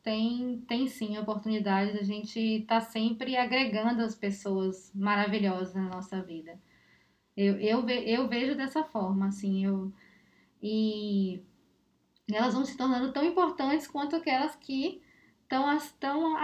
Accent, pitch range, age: Brazilian, 230-295 Hz, 10-29